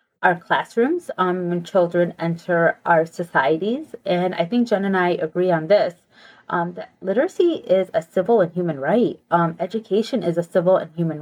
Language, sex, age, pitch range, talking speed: English, female, 30-49, 175-225 Hz, 175 wpm